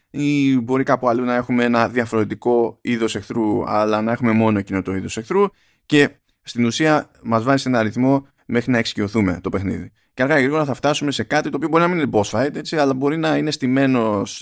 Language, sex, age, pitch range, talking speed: Greek, male, 20-39, 110-135 Hz, 220 wpm